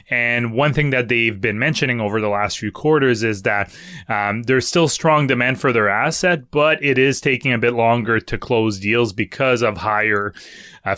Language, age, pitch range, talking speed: English, 20-39, 110-140 Hz, 195 wpm